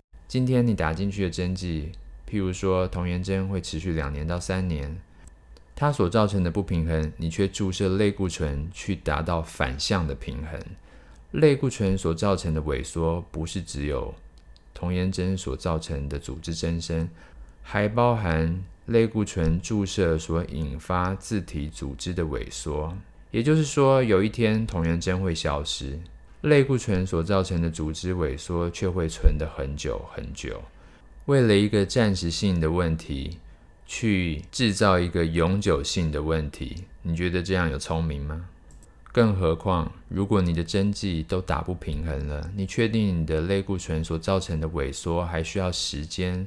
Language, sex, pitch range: Chinese, male, 80-95 Hz